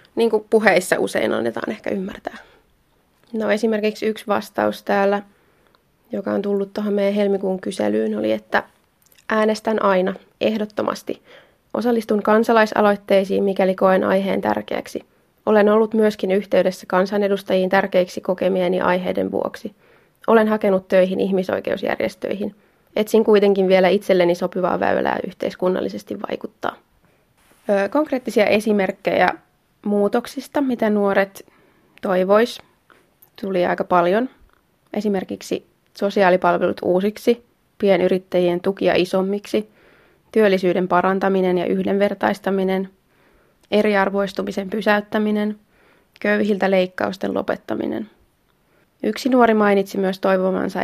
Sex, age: female, 20-39